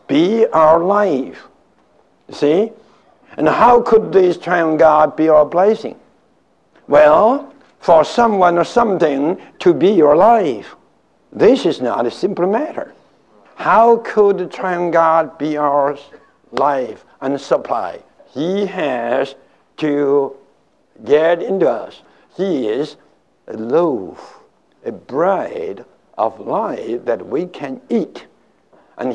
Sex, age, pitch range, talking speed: male, 60-79, 155-215 Hz, 115 wpm